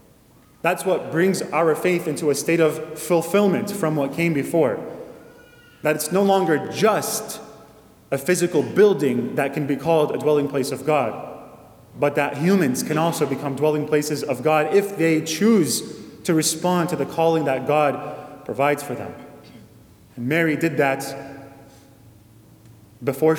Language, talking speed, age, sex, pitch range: English, 150 wpm, 20-39, male, 140-170 Hz